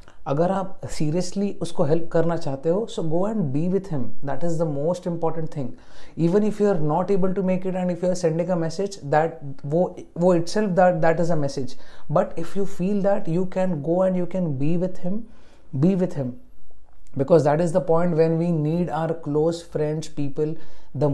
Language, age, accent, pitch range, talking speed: English, 30-49, Indian, 150-180 Hz, 205 wpm